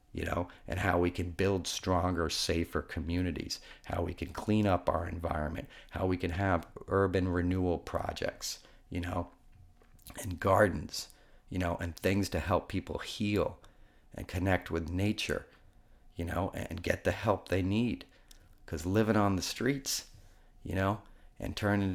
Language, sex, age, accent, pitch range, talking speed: English, male, 40-59, American, 90-130 Hz, 155 wpm